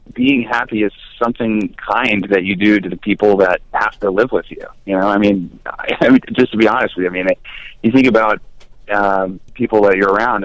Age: 30-49